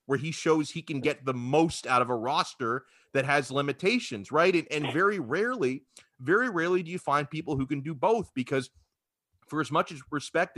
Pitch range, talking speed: 120-140 Hz, 200 wpm